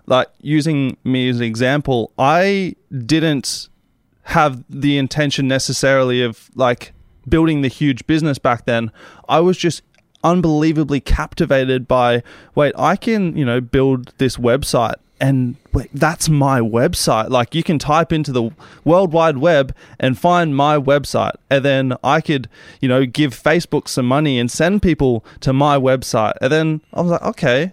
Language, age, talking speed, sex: English, 20-39, 160 wpm, male